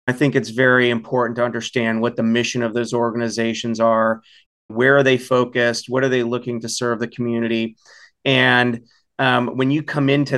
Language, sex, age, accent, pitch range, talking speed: English, male, 30-49, American, 115-130 Hz, 185 wpm